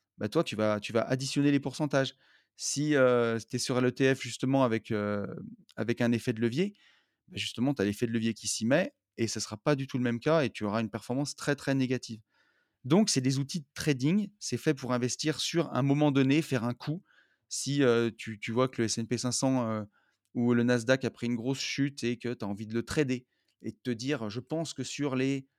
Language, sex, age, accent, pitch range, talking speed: French, male, 30-49, French, 115-145 Hz, 235 wpm